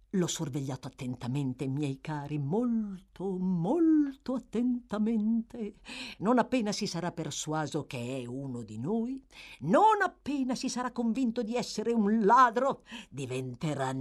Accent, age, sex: native, 50-69, female